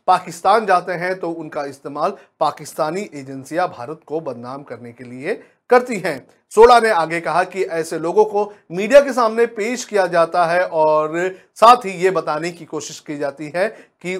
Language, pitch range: Hindi, 155-205 Hz